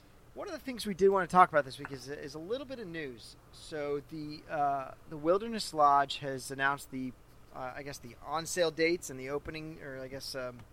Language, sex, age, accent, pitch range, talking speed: English, male, 30-49, American, 135-165 Hz, 230 wpm